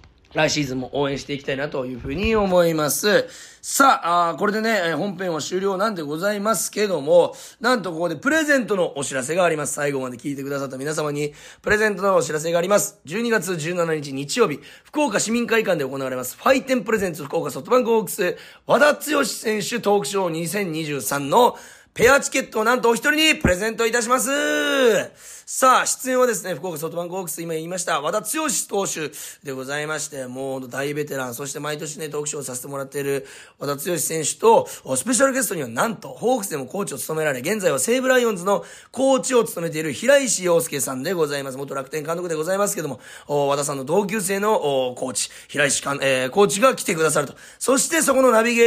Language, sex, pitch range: Japanese, male, 145-230 Hz